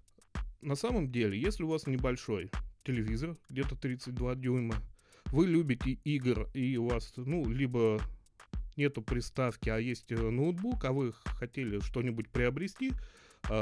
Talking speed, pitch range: 130 wpm, 110-140 Hz